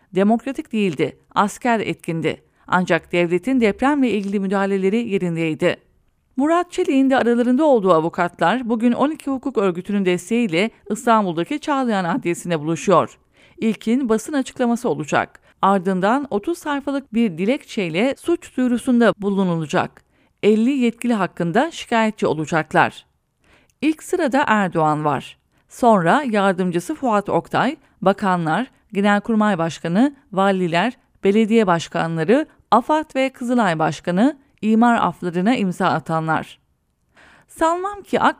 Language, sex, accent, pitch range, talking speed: English, female, Turkish, 180-255 Hz, 105 wpm